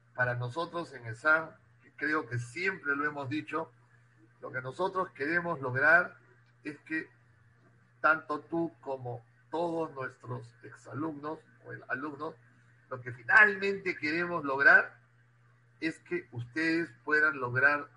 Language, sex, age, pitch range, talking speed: Spanish, male, 50-69, 120-155 Hz, 115 wpm